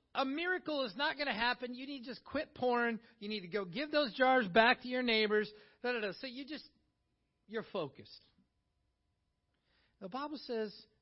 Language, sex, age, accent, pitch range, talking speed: English, male, 40-59, American, 170-250 Hz, 175 wpm